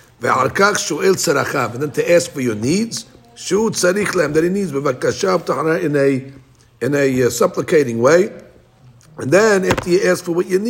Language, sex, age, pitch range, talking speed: English, male, 50-69, 135-185 Hz, 100 wpm